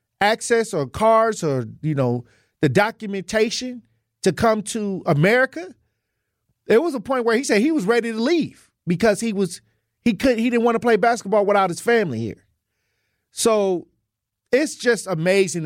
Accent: American